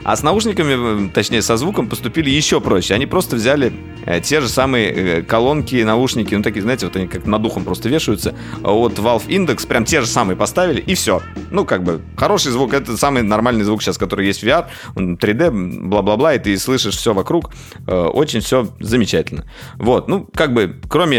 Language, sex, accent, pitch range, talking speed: Russian, male, native, 90-115 Hz, 190 wpm